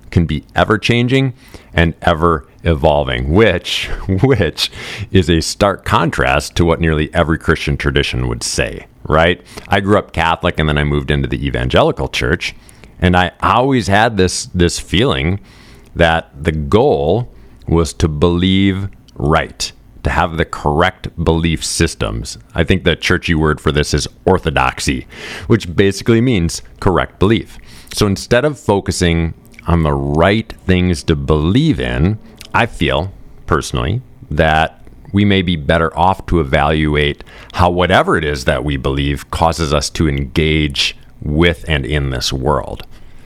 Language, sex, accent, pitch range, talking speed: English, male, American, 80-100 Hz, 145 wpm